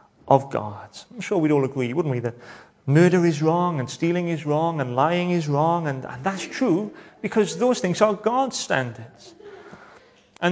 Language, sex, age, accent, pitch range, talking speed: English, male, 30-49, British, 145-190 Hz, 175 wpm